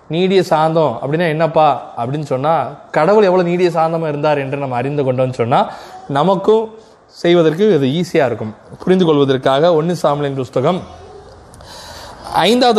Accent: native